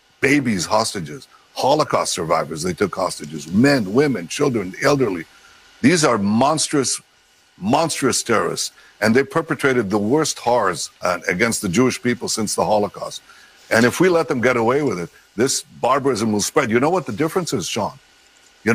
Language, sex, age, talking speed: English, male, 60-79, 165 wpm